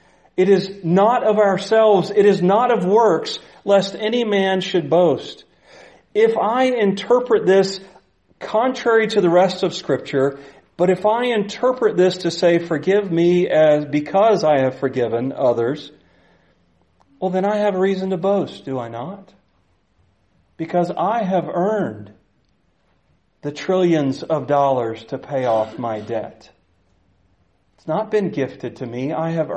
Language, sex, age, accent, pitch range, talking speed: English, male, 40-59, American, 135-195 Hz, 145 wpm